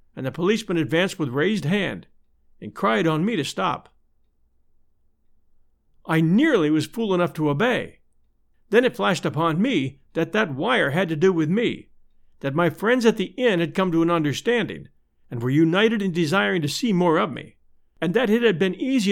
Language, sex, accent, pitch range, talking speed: English, male, American, 135-200 Hz, 190 wpm